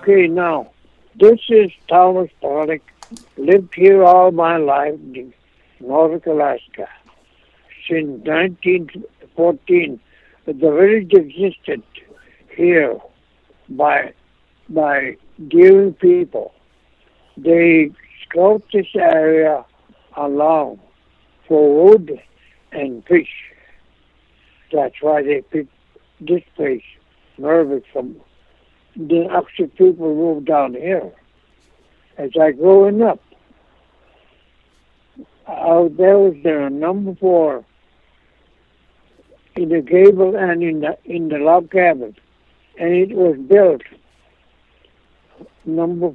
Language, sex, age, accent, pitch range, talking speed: English, male, 60-79, American, 130-180 Hz, 90 wpm